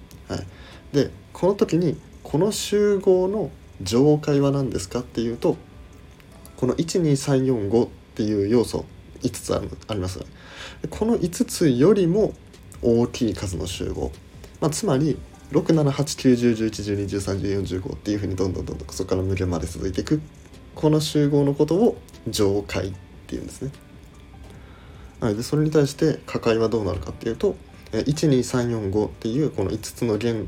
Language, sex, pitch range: Japanese, male, 90-130 Hz